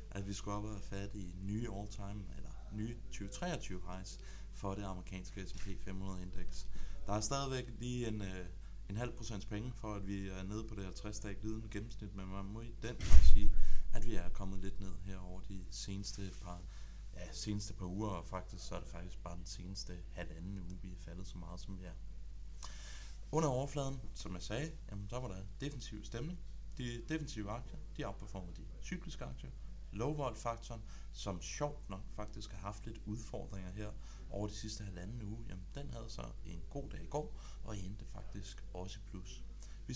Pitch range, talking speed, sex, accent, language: 95-110 Hz, 195 wpm, male, native, Danish